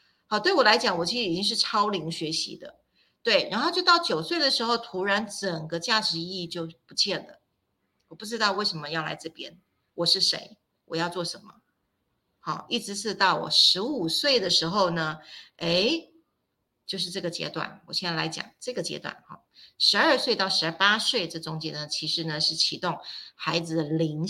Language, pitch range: Chinese, 165-210 Hz